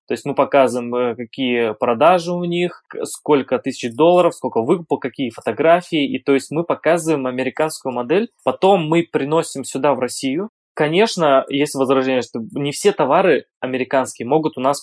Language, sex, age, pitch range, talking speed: Russian, male, 20-39, 130-165 Hz, 160 wpm